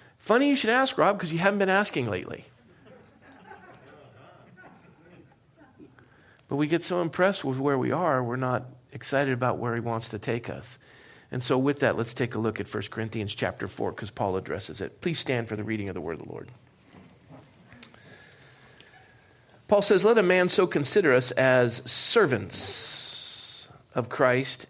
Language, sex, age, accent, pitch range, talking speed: English, male, 50-69, American, 125-180 Hz, 170 wpm